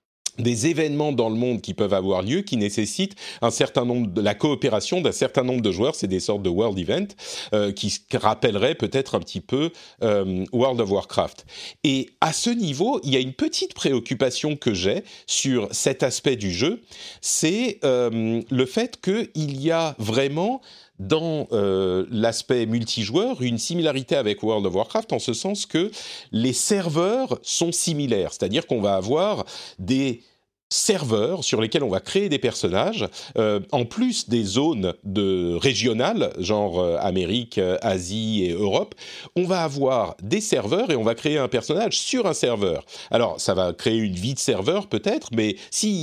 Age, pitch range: 40-59, 110-155 Hz